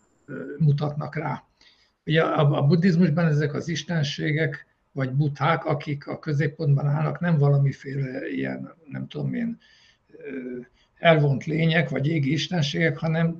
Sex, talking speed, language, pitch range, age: male, 115 wpm, Hungarian, 145-180 Hz, 60-79